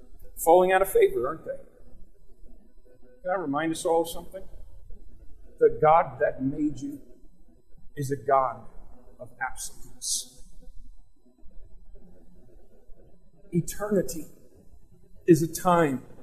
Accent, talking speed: American, 100 wpm